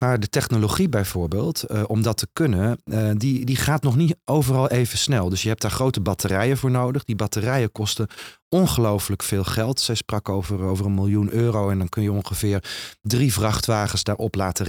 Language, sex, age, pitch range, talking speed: Dutch, male, 30-49, 105-135 Hz, 195 wpm